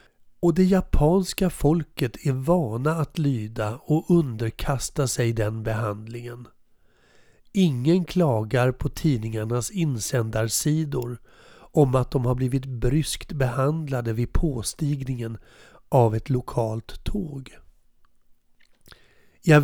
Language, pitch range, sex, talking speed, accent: Swedish, 120-160 Hz, male, 100 wpm, native